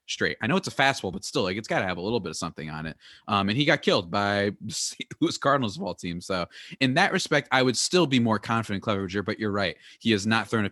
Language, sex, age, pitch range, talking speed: English, male, 20-39, 95-130 Hz, 285 wpm